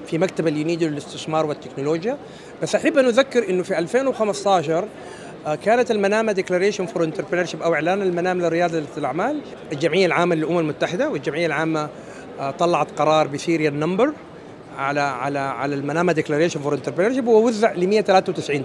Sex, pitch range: male, 165-225 Hz